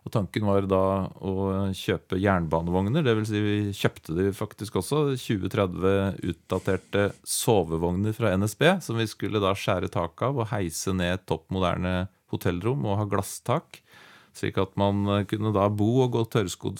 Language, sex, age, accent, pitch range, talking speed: English, male, 30-49, Norwegian, 95-115 Hz, 155 wpm